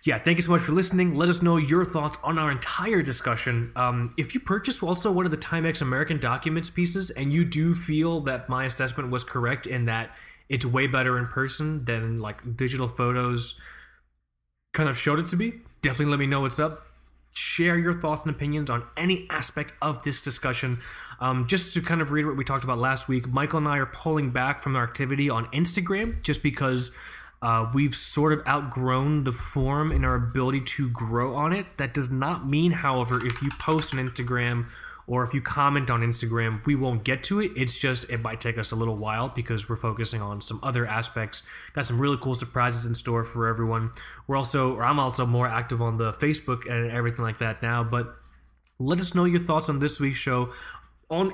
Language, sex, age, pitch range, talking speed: English, male, 20-39, 120-155 Hz, 215 wpm